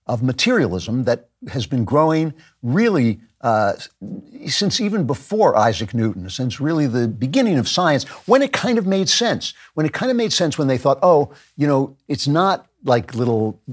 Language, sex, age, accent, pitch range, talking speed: English, male, 60-79, American, 115-150 Hz, 180 wpm